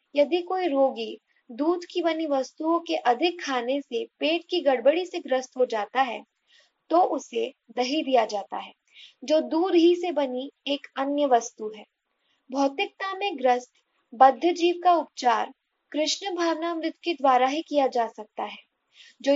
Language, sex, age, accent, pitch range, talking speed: Hindi, female, 20-39, native, 250-330 Hz, 160 wpm